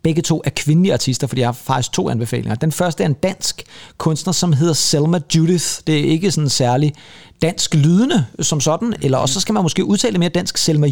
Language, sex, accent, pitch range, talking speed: Danish, male, native, 150-195 Hz, 220 wpm